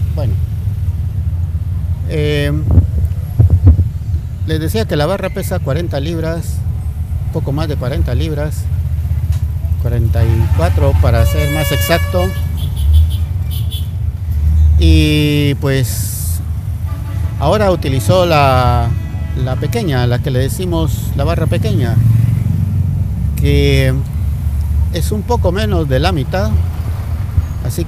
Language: Spanish